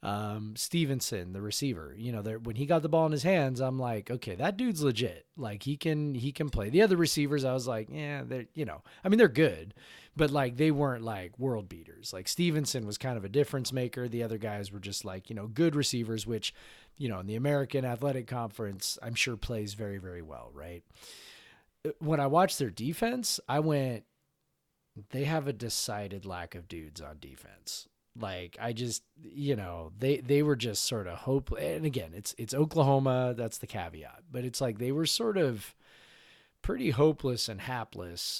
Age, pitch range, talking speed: 30-49, 105-140 Hz, 200 wpm